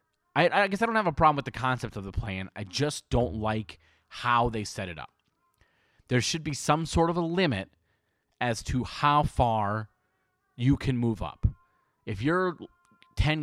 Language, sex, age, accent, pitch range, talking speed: English, male, 30-49, American, 110-155 Hz, 185 wpm